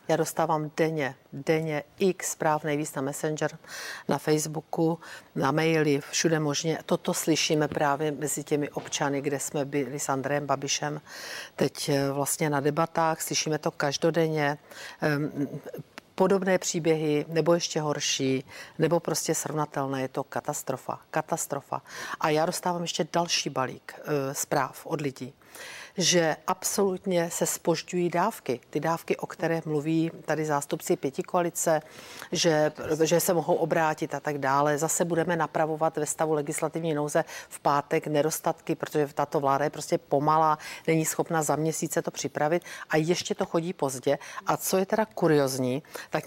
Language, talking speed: Czech, 145 wpm